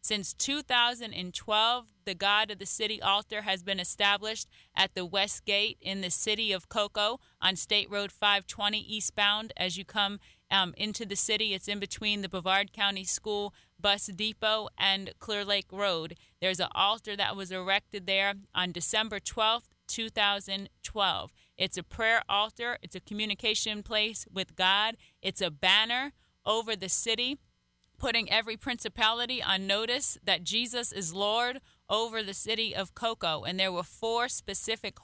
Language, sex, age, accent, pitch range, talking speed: English, female, 30-49, American, 190-220 Hz, 155 wpm